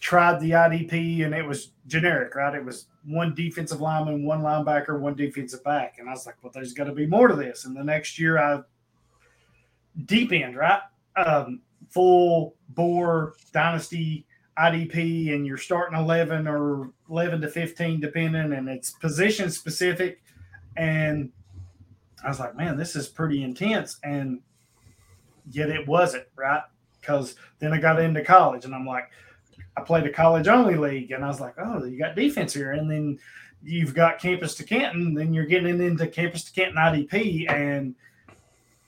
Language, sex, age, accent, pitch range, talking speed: English, male, 30-49, American, 135-165 Hz, 170 wpm